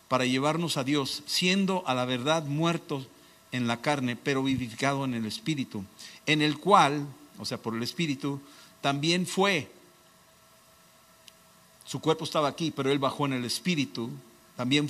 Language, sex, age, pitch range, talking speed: Spanish, male, 50-69, 135-165 Hz, 155 wpm